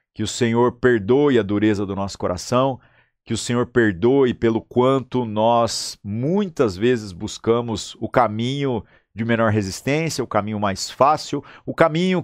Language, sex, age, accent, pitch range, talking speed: Portuguese, male, 50-69, Brazilian, 100-130 Hz, 145 wpm